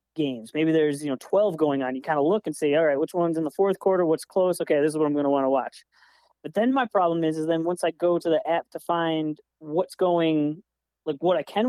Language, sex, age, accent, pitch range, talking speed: English, male, 30-49, American, 150-210 Hz, 280 wpm